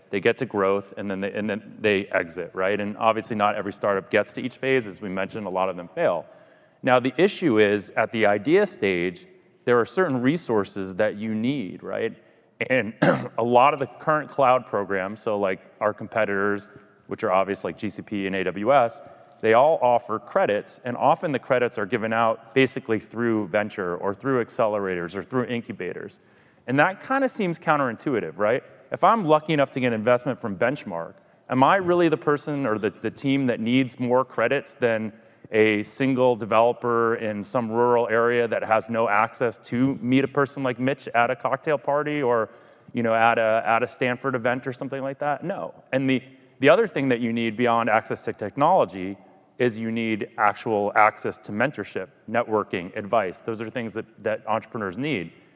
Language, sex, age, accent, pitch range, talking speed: English, male, 30-49, American, 105-135 Hz, 190 wpm